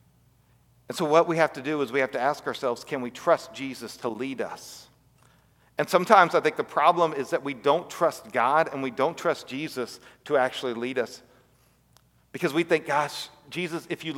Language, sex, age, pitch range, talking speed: English, male, 40-59, 130-165 Hz, 205 wpm